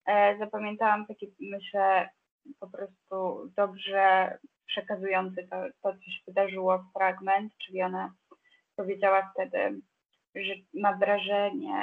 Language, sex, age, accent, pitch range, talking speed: Polish, female, 20-39, native, 195-220 Hz, 100 wpm